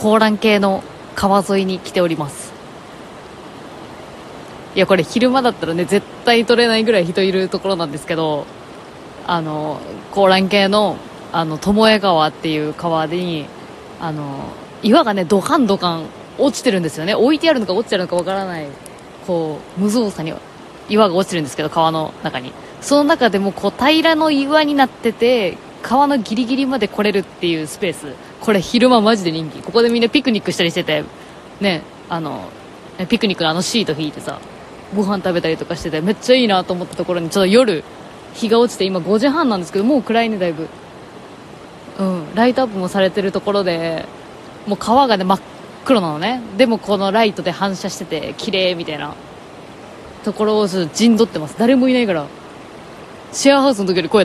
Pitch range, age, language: 170-230 Hz, 20-39, Japanese